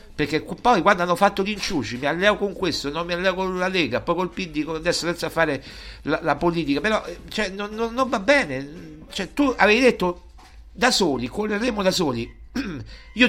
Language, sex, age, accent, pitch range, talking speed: Italian, male, 60-79, native, 115-185 Hz, 190 wpm